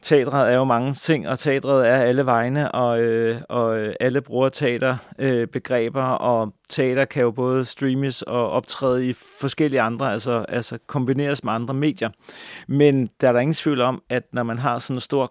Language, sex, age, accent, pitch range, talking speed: Danish, male, 30-49, native, 120-140 Hz, 190 wpm